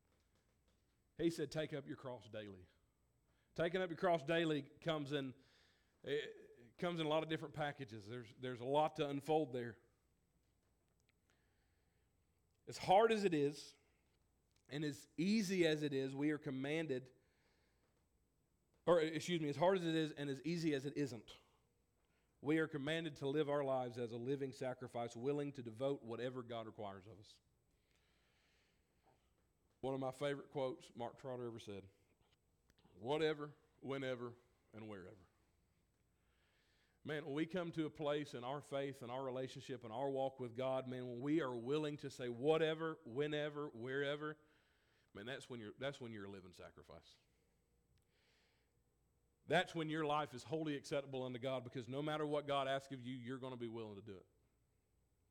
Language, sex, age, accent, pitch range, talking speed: English, male, 40-59, American, 115-150 Hz, 160 wpm